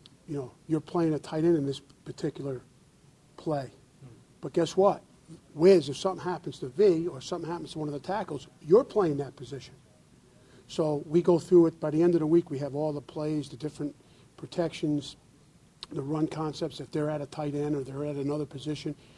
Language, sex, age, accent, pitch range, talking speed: English, male, 50-69, American, 140-160 Hz, 205 wpm